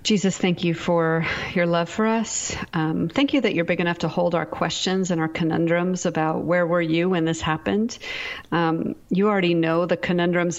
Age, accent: 40-59, American